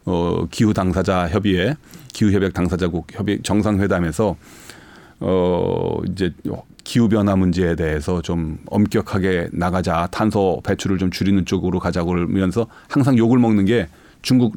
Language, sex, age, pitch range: Korean, male, 40-59, 90-120 Hz